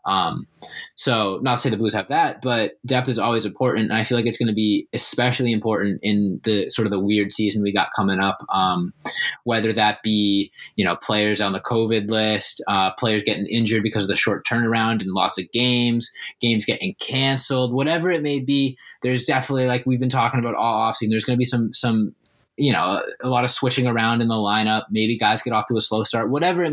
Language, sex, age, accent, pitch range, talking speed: English, male, 20-39, American, 105-125 Hz, 225 wpm